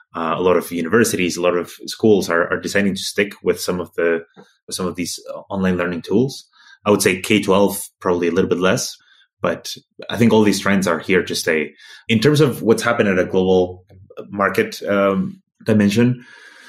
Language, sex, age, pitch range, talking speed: English, male, 20-39, 90-105 Hz, 195 wpm